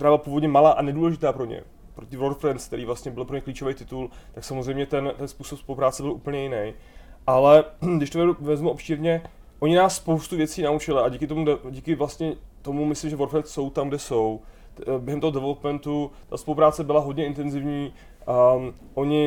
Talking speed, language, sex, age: 180 wpm, Czech, male, 20-39